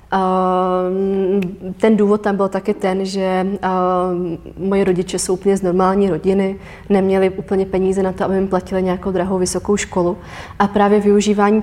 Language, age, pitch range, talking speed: Czech, 30-49, 180-205 Hz, 160 wpm